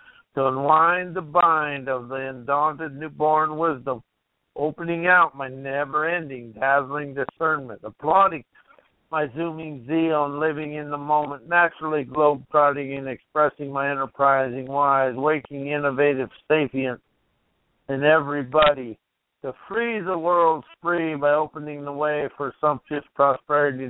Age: 60-79